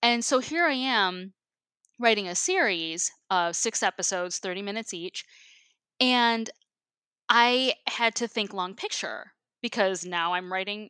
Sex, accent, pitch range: female, American, 180-235 Hz